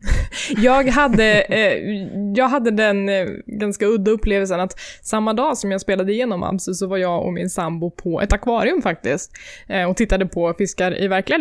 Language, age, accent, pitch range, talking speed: Swedish, 20-39, native, 185-225 Hz, 185 wpm